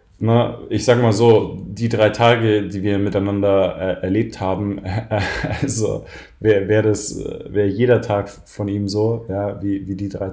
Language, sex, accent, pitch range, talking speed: German, male, German, 95-110 Hz, 170 wpm